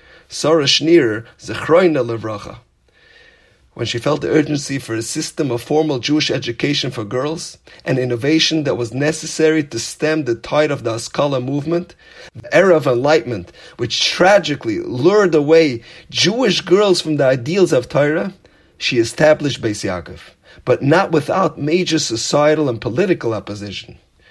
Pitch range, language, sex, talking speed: 120-165 Hz, English, male, 135 wpm